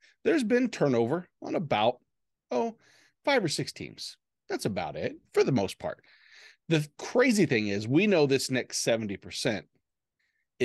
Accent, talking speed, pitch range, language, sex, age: American, 145 wpm, 105-135 Hz, English, male, 40-59